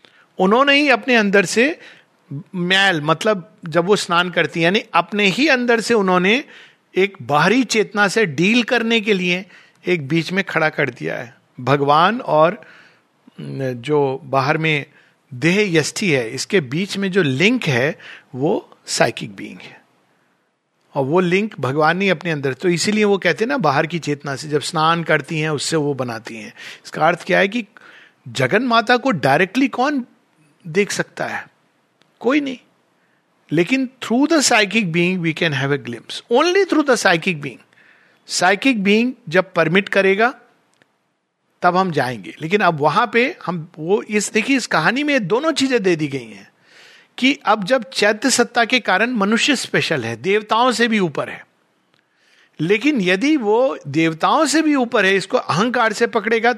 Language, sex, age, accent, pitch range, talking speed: Hindi, male, 50-69, native, 160-235 Hz, 170 wpm